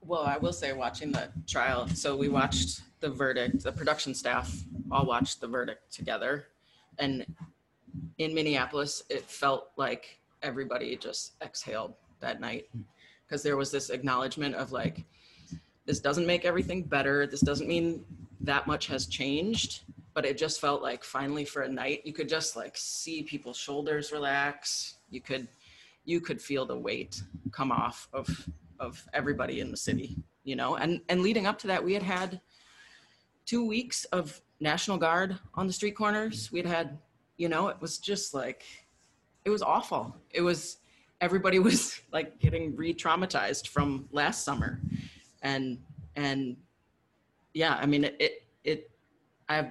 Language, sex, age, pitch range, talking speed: English, female, 30-49, 135-170 Hz, 160 wpm